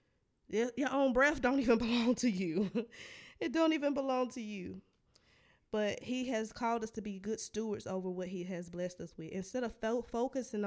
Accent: American